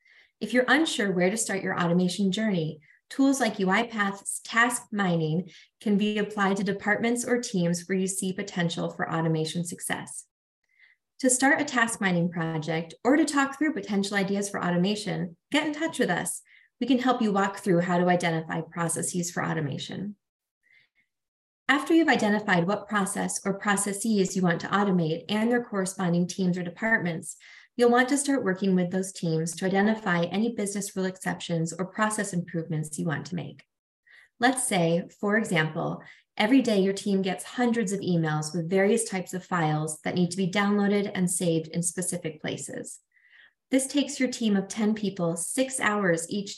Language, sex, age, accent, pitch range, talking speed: English, female, 20-39, American, 175-225 Hz, 175 wpm